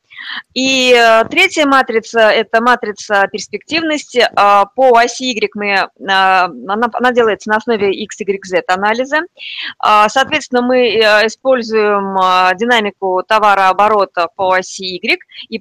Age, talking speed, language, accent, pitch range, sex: 20-39, 105 wpm, Russian, native, 195-250 Hz, female